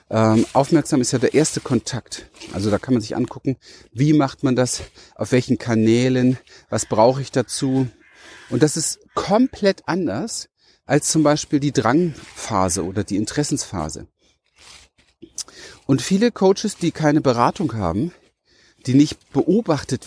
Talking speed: 140 wpm